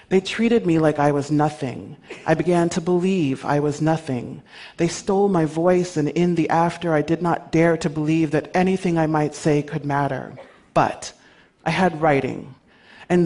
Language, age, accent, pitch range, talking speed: English, 40-59, American, 150-185 Hz, 180 wpm